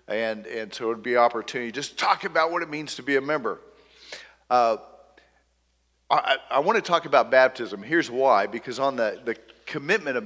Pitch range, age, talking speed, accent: 120-160 Hz, 50-69, 200 wpm, American